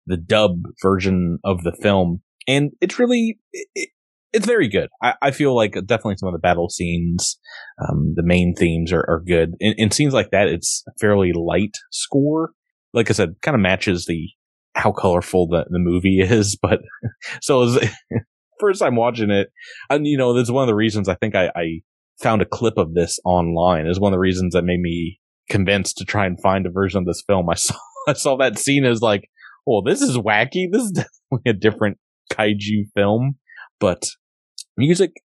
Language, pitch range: English, 90-125 Hz